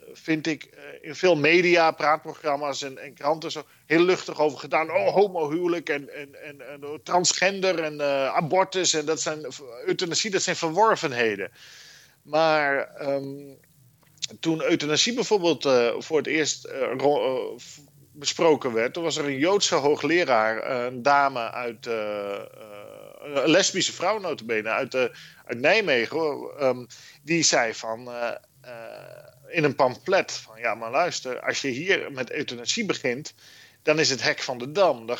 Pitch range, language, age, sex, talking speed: 130-165 Hz, Dutch, 40-59, male, 150 wpm